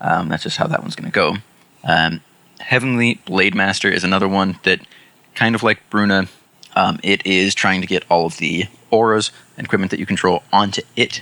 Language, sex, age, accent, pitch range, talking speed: English, male, 20-39, American, 95-130 Hz, 195 wpm